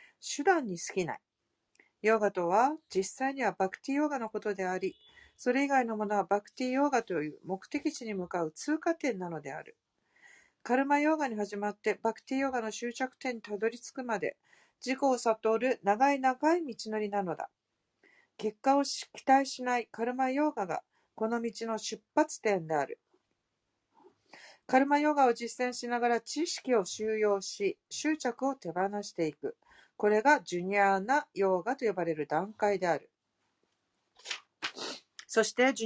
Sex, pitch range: female, 205-280 Hz